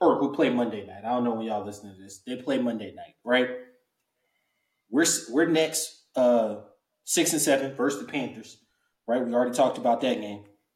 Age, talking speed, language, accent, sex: 20-39, 185 wpm, English, American, male